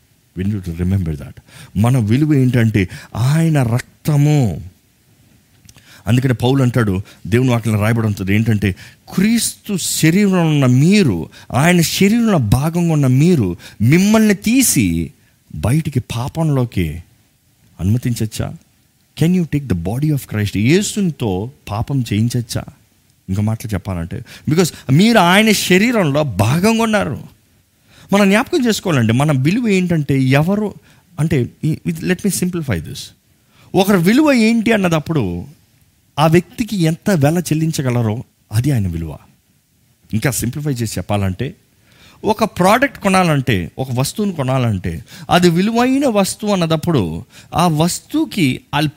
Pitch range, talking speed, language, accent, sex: 115-180 Hz, 110 wpm, Telugu, native, male